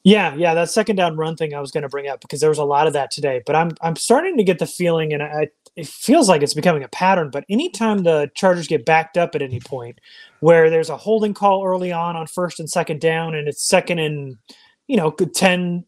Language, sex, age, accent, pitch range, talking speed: English, male, 30-49, American, 165-195 Hz, 255 wpm